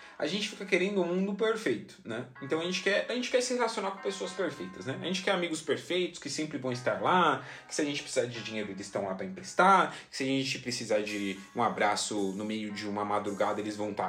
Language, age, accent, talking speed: Portuguese, 20-39, Brazilian, 250 wpm